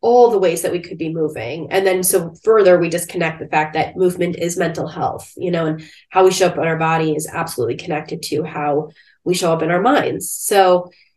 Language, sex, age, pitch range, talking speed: English, female, 20-39, 170-225 Hz, 230 wpm